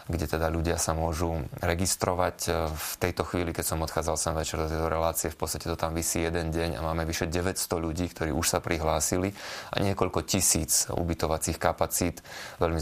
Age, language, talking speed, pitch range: 30-49, Slovak, 185 wpm, 80-85 Hz